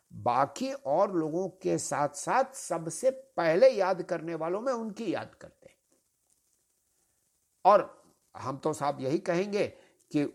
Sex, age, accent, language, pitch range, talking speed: male, 60-79, Indian, English, 140-190 Hz, 130 wpm